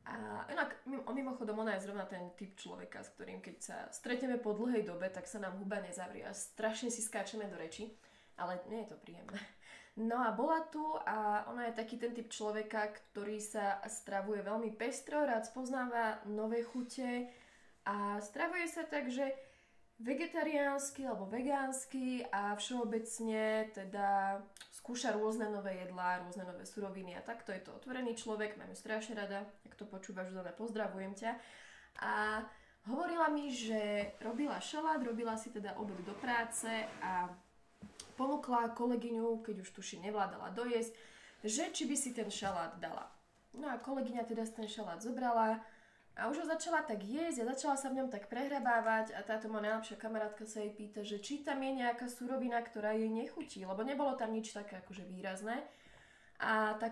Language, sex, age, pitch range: Slovak, female, 20-39, 210-250 Hz